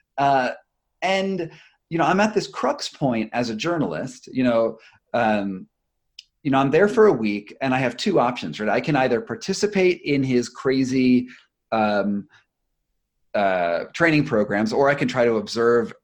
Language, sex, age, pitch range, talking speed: English, male, 30-49, 120-180 Hz, 170 wpm